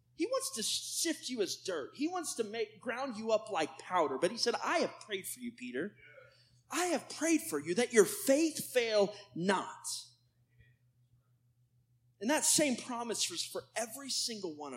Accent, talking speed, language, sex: American, 180 wpm, English, male